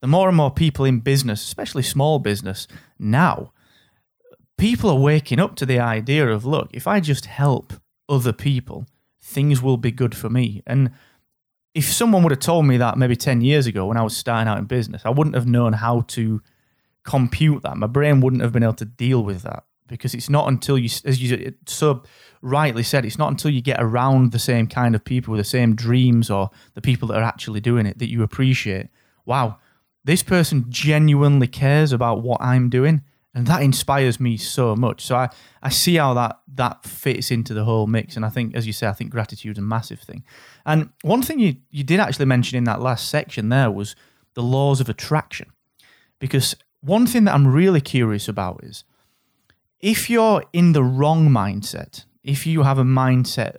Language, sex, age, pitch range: English, male, 30-49, 115-145 Hz